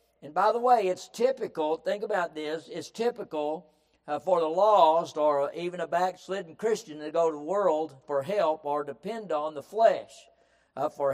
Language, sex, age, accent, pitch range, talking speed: English, male, 60-79, American, 160-220 Hz, 185 wpm